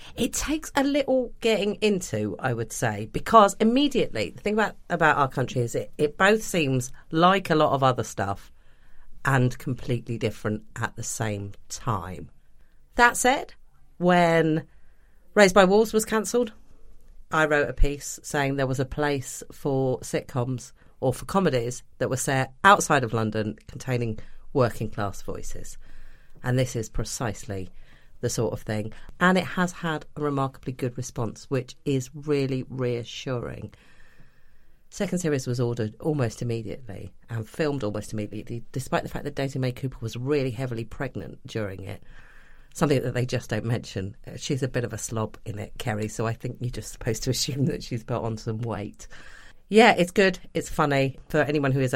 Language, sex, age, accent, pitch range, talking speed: English, female, 40-59, British, 110-150 Hz, 170 wpm